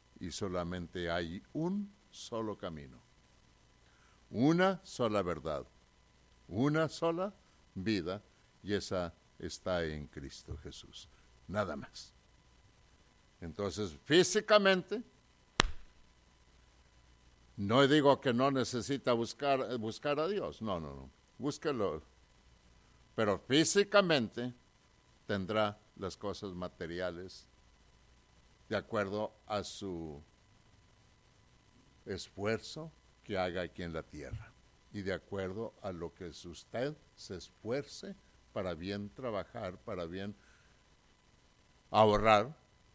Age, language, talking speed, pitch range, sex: 60-79, English, 95 wpm, 75-120 Hz, male